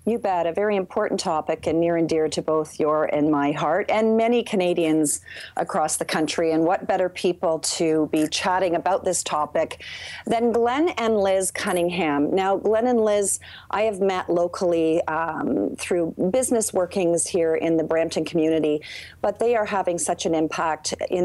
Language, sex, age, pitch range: English, female, 40-59, 160-195 Hz